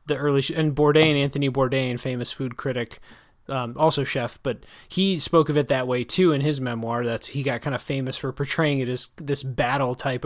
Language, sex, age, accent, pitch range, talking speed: English, male, 20-39, American, 125-155 Hz, 210 wpm